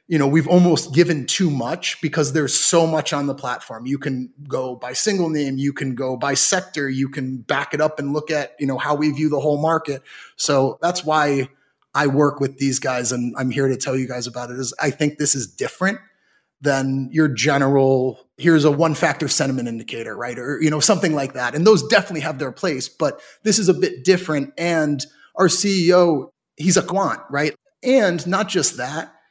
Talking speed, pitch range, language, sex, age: 210 wpm, 135-170 Hz, English, male, 30-49